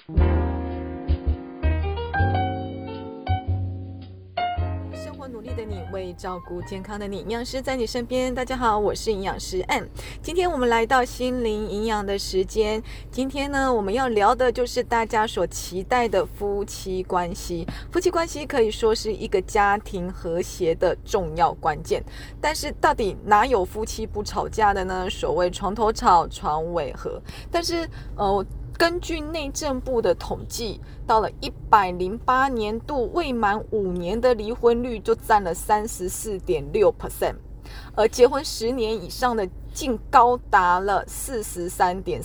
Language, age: Chinese, 20-39